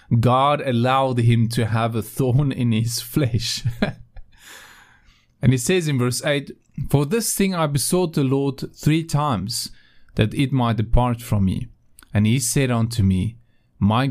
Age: 30-49